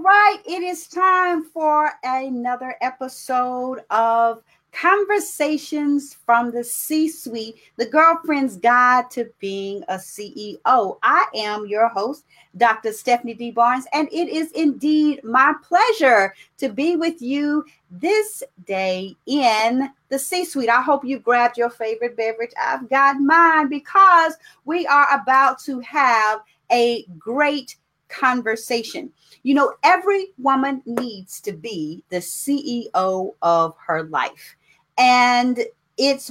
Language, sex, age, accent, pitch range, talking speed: English, female, 40-59, American, 225-300 Hz, 125 wpm